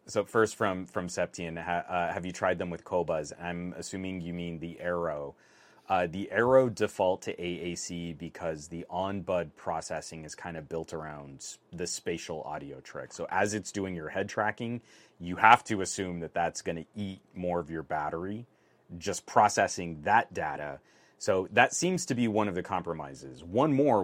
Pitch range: 80-100 Hz